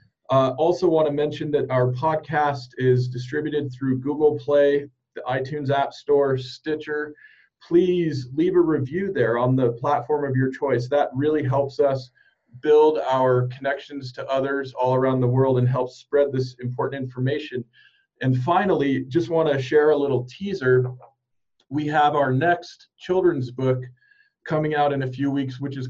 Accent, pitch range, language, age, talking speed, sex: American, 125-150 Hz, English, 40-59, 165 wpm, male